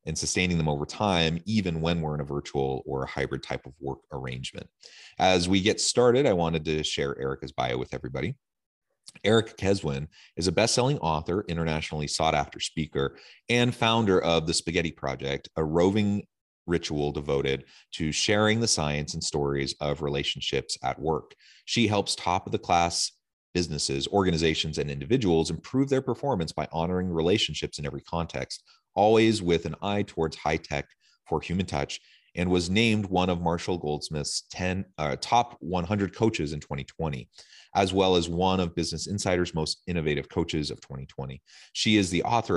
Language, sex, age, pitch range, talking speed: English, male, 30-49, 75-95 Hz, 160 wpm